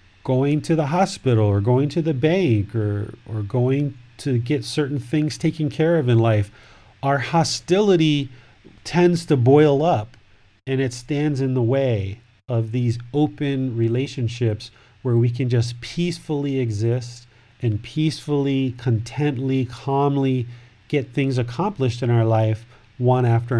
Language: English